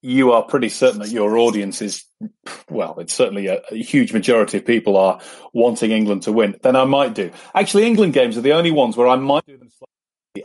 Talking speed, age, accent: 225 wpm, 30-49, British